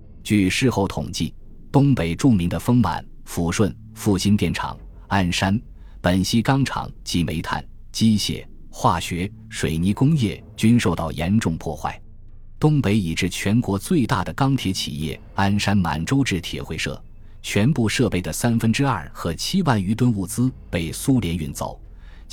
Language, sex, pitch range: Chinese, male, 85-120 Hz